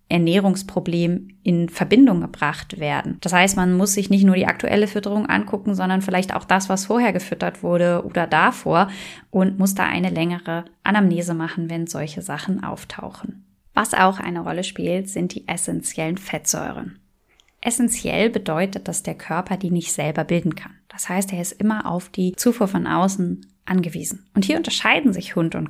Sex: female